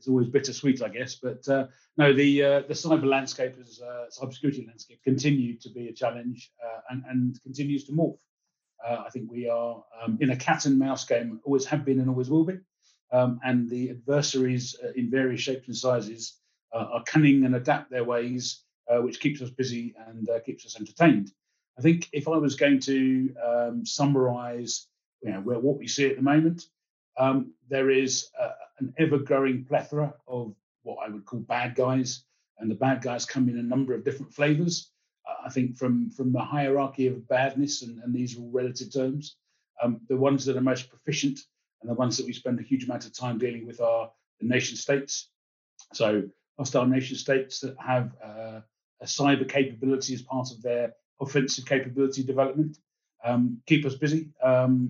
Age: 40-59